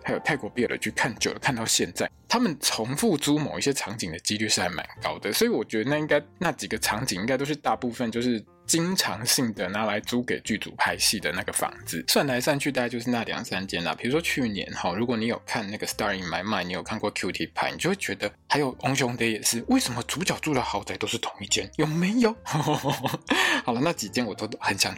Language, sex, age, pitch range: Chinese, male, 20-39, 110-150 Hz